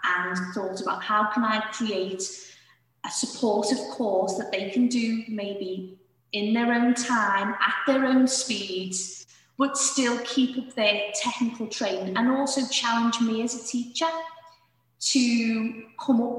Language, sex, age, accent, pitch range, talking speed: English, female, 20-39, British, 195-240 Hz, 145 wpm